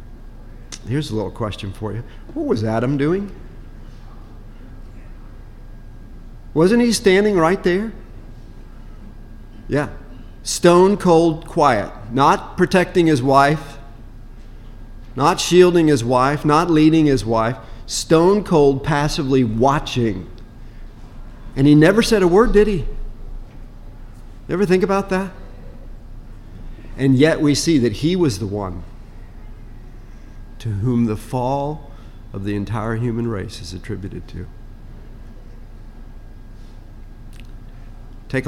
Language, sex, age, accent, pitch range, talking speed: English, male, 50-69, American, 110-150 Hz, 110 wpm